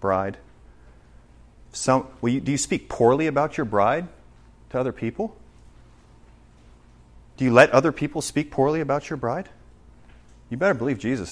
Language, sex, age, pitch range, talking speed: English, male, 30-49, 95-145 Hz, 135 wpm